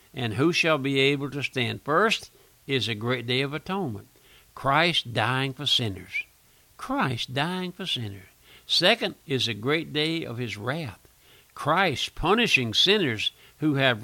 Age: 60-79